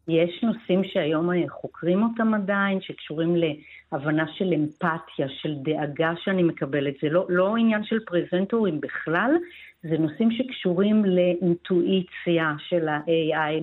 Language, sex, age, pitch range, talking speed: Hebrew, female, 50-69, 160-215 Hz, 120 wpm